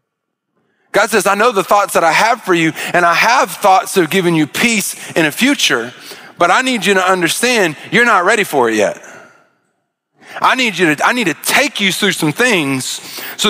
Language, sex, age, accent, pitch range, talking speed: English, male, 30-49, American, 175-230 Hz, 210 wpm